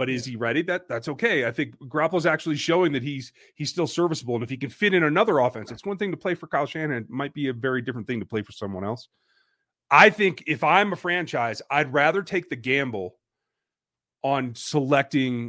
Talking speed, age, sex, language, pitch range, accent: 225 wpm, 30-49, male, English, 120-160 Hz, American